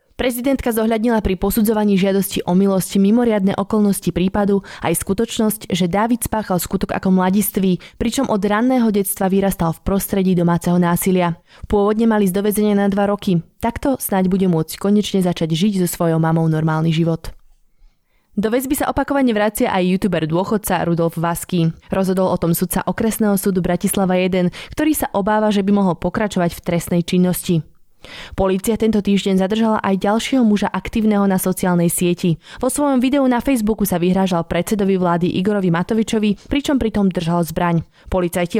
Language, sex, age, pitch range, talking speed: Slovak, female, 20-39, 180-220 Hz, 155 wpm